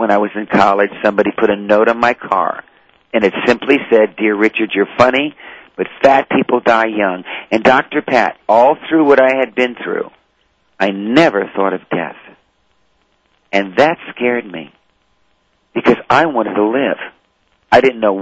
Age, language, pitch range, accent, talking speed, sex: 50-69, English, 100-125 Hz, American, 170 wpm, male